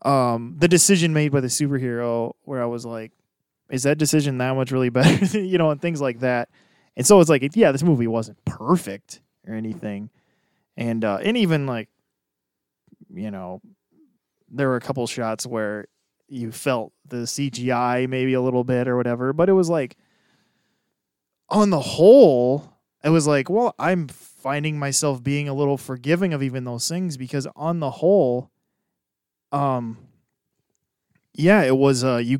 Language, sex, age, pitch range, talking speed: English, male, 20-39, 125-160 Hz, 165 wpm